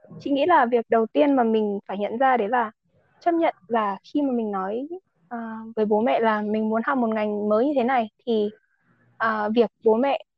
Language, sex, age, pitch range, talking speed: Vietnamese, female, 20-39, 220-280 Hz, 225 wpm